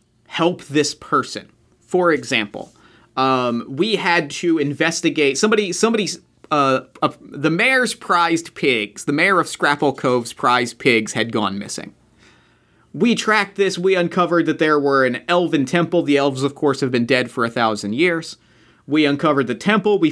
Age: 30-49